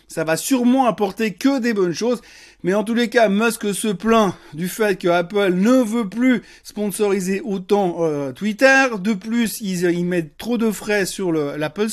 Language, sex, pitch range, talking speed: French, male, 170-225 Hz, 190 wpm